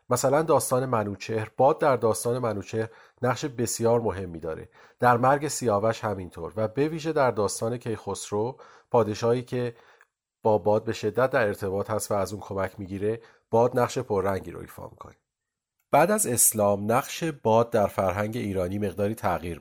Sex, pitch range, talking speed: male, 100-120 Hz, 155 wpm